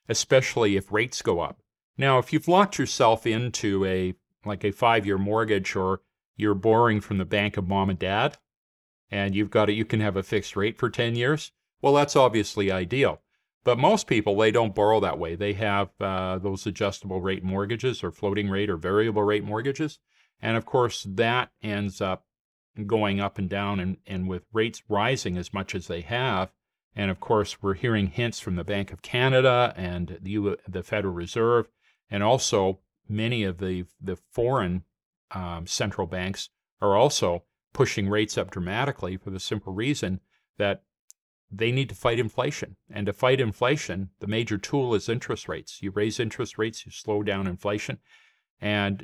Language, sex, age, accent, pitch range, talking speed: English, male, 40-59, American, 95-115 Hz, 180 wpm